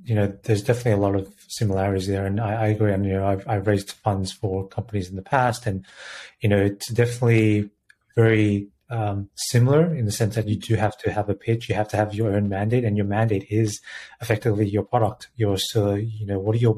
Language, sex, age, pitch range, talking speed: English, male, 30-49, 100-115 Hz, 240 wpm